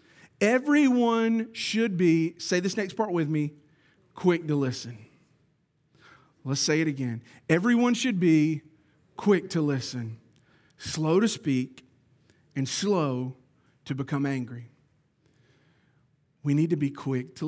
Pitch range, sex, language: 150-220 Hz, male, English